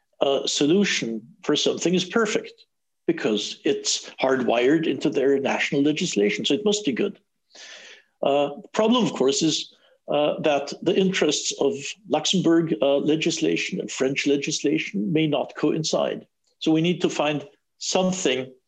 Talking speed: 140 wpm